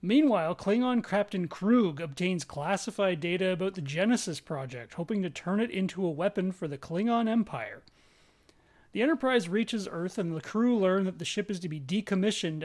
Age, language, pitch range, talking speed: 30-49, English, 160-210 Hz, 175 wpm